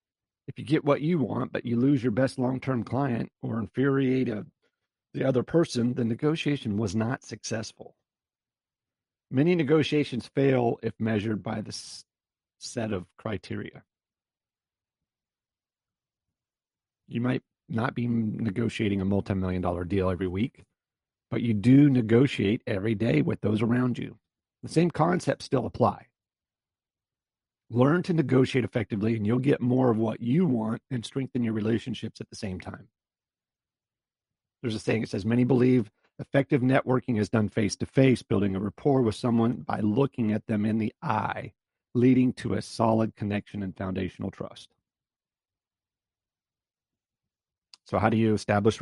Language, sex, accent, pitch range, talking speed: English, male, American, 105-130 Hz, 145 wpm